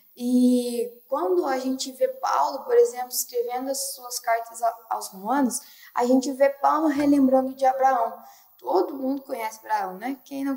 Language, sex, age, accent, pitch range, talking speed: Portuguese, female, 10-29, Brazilian, 245-320 Hz, 160 wpm